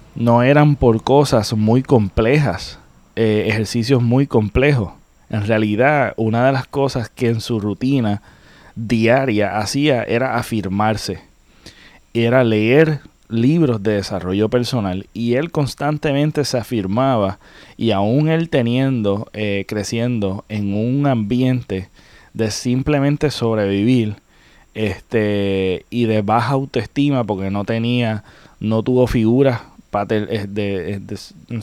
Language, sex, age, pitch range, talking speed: Spanish, male, 30-49, 105-130 Hz, 110 wpm